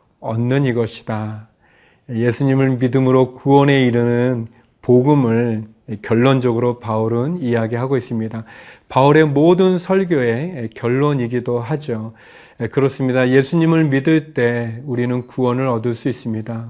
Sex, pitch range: male, 120-150 Hz